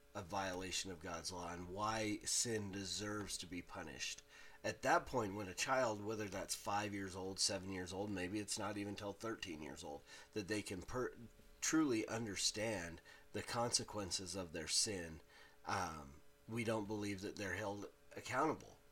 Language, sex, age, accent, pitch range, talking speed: English, male, 30-49, American, 90-105 Hz, 170 wpm